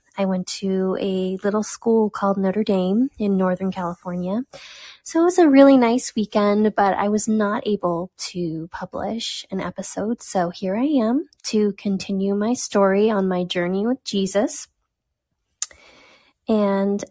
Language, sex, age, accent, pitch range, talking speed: English, female, 20-39, American, 190-230 Hz, 145 wpm